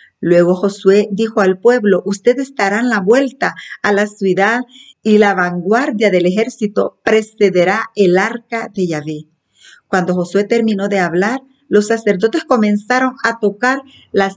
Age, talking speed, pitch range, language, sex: 50-69, 140 wpm, 175-220 Hz, Spanish, female